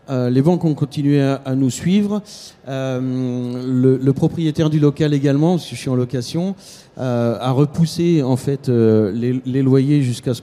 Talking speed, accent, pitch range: 190 wpm, French, 125-155 Hz